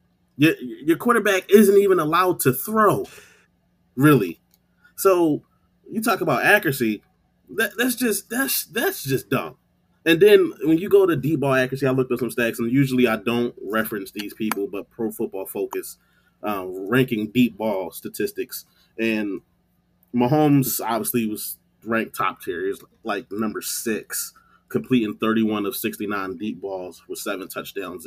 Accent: American